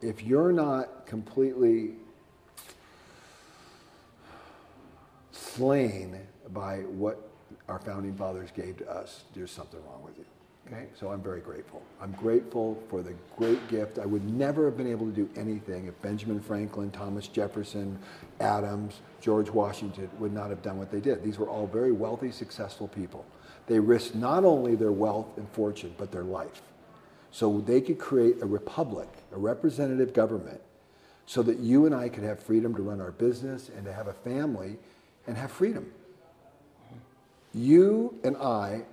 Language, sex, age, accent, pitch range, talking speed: English, male, 50-69, American, 105-130 Hz, 160 wpm